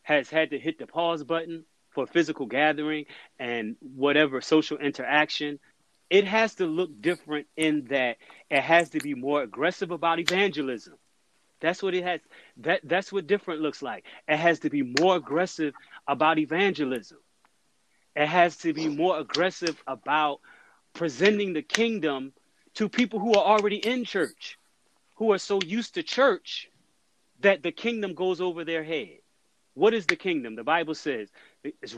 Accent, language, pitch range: American, English, 155-205 Hz